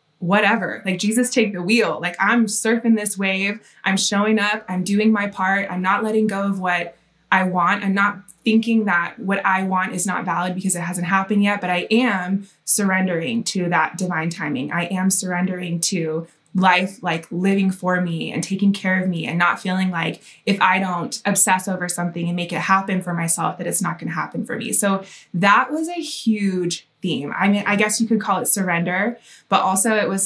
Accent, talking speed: American, 210 wpm